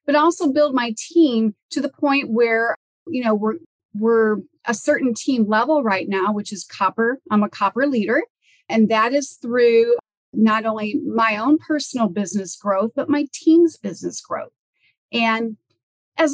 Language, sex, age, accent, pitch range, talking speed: English, female, 40-59, American, 210-280 Hz, 160 wpm